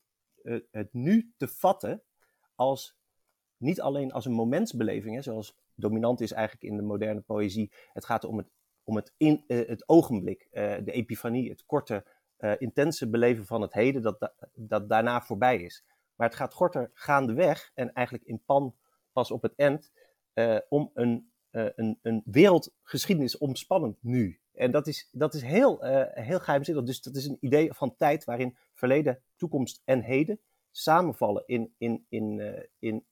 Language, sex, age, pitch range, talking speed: Dutch, male, 30-49, 110-140 Hz, 145 wpm